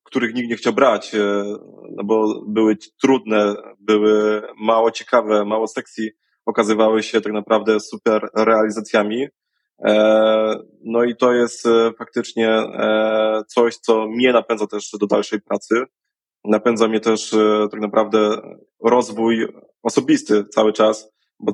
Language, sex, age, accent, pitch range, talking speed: Polish, male, 20-39, native, 105-115 Hz, 115 wpm